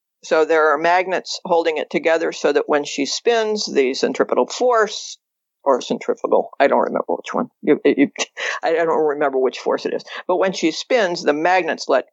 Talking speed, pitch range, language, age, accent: 175 wpm, 140-205 Hz, English, 50-69, American